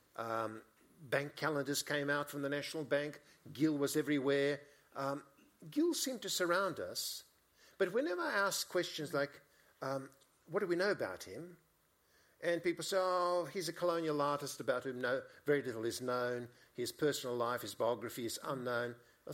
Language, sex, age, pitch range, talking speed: English, male, 50-69, 130-180 Hz, 170 wpm